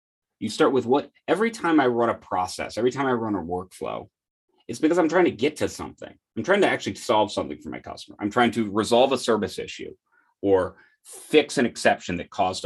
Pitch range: 105-160 Hz